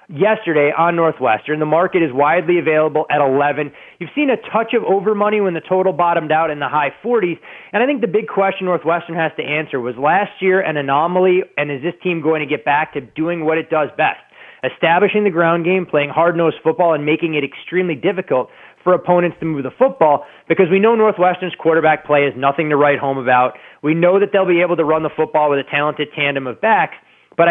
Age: 30-49